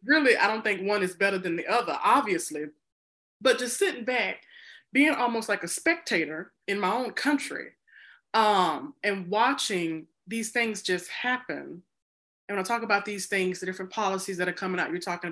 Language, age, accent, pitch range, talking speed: English, 20-39, American, 185-265 Hz, 185 wpm